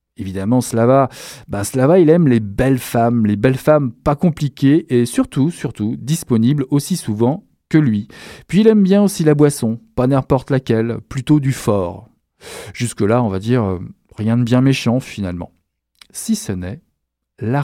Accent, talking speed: French, 160 wpm